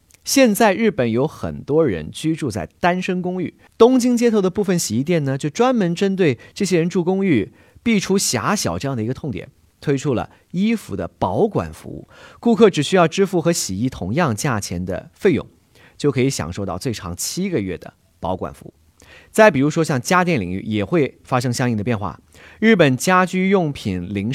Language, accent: Chinese, native